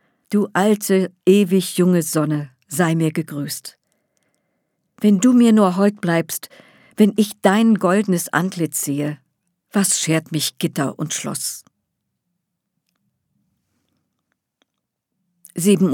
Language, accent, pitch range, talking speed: German, German, 160-205 Hz, 100 wpm